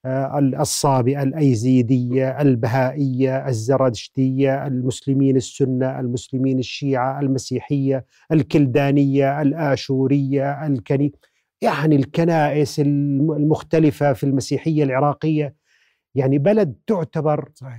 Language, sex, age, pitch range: Arabic, male, 40-59, 130-150 Hz